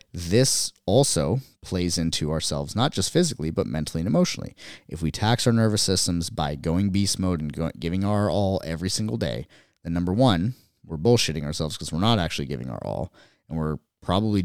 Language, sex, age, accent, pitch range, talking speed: English, male, 30-49, American, 80-110 Hz, 185 wpm